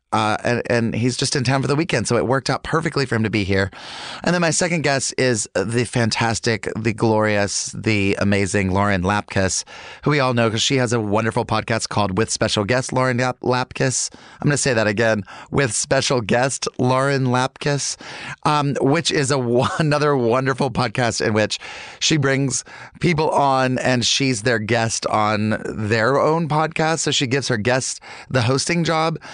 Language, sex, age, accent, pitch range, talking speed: English, male, 30-49, American, 105-135 Hz, 180 wpm